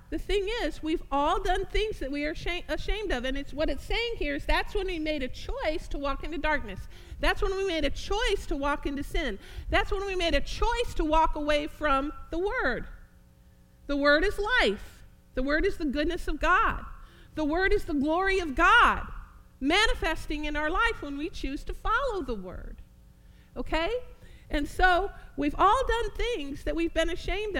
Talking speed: 200 wpm